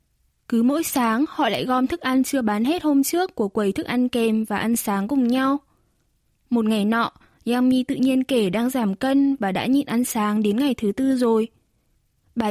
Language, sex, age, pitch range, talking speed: Vietnamese, female, 10-29, 220-275 Hz, 215 wpm